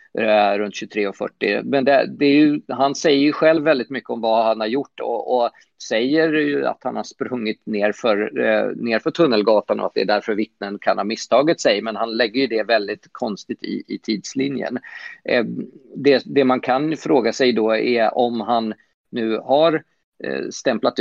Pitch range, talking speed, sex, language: 110-145 Hz, 180 wpm, male, Swedish